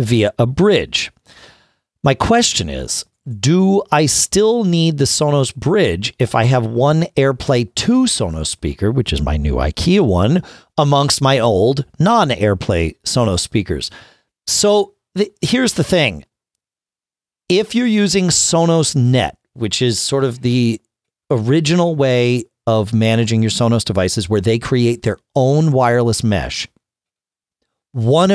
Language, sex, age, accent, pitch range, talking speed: English, male, 40-59, American, 110-145 Hz, 130 wpm